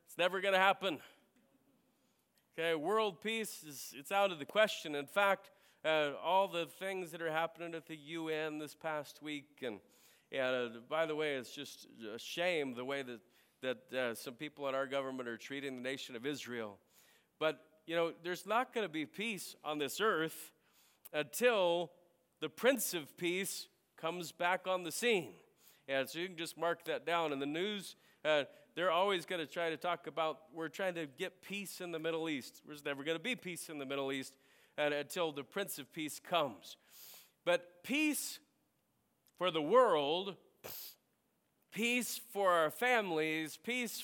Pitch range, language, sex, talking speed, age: 140-190 Hz, English, male, 180 wpm, 40-59